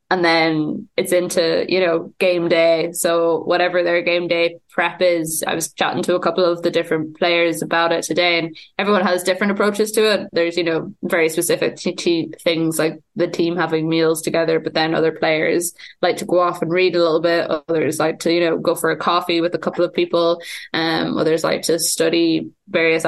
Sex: female